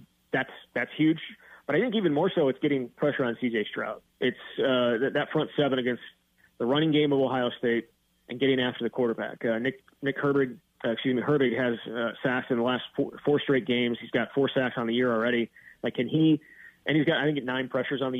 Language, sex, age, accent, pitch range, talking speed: English, male, 30-49, American, 125-145 Hz, 235 wpm